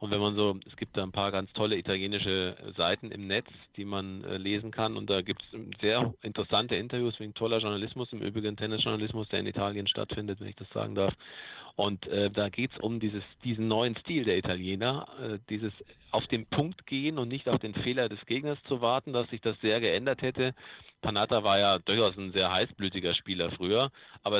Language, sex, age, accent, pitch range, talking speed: German, male, 40-59, German, 100-125 Hz, 205 wpm